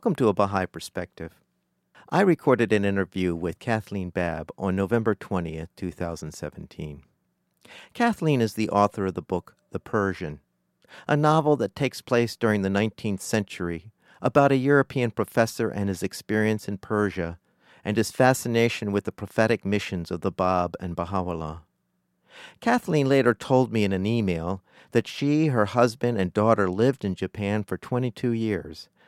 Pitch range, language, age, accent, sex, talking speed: 95-125 Hz, English, 50-69, American, male, 155 wpm